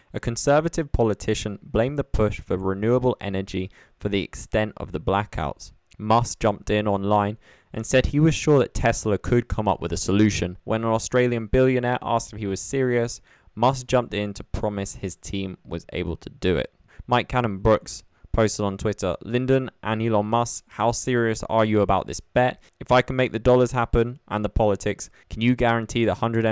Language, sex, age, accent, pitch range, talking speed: English, male, 20-39, British, 95-120 Hz, 190 wpm